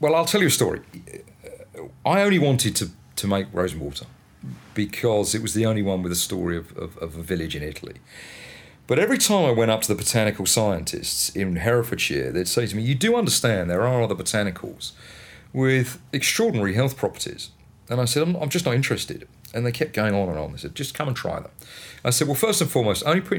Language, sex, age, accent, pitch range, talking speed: English, male, 40-59, British, 100-140 Hz, 225 wpm